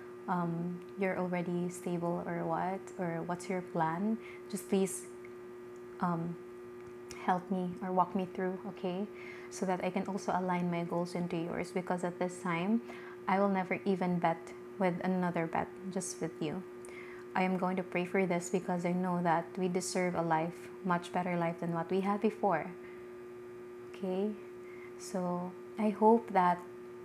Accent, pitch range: Filipino, 165-185 Hz